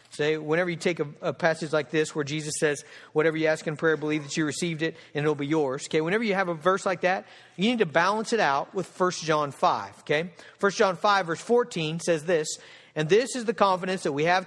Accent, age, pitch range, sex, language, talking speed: American, 50-69, 180-275 Hz, male, English, 250 wpm